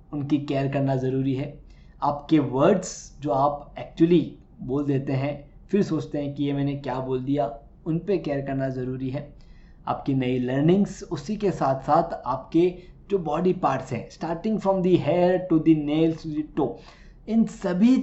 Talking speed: 170 wpm